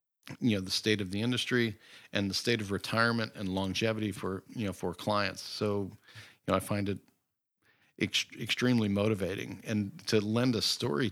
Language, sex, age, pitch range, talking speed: English, male, 40-59, 100-115 Hz, 175 wpm